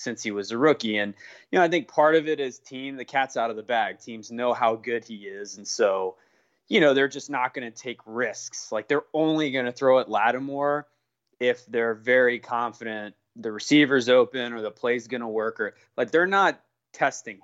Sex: male